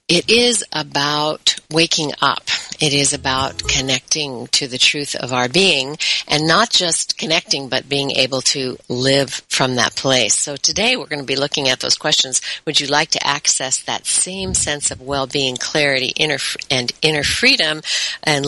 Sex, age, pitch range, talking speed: female, 50-69, 140-180 Hz, 175 wpm